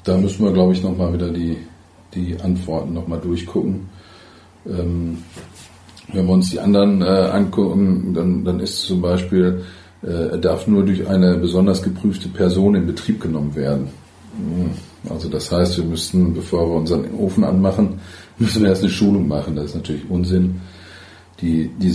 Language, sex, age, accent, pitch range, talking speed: German, male, 40-59, German, 85-95 Hz, 170 wpm